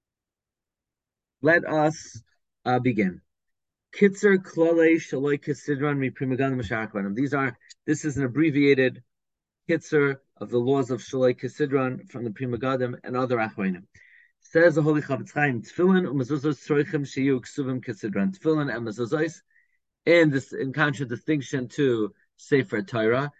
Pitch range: 120-150 Hz